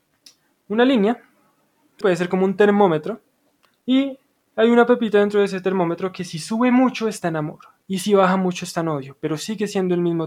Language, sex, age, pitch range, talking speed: Spanish, male, 20-39, 155-205 Hz, 200 wpm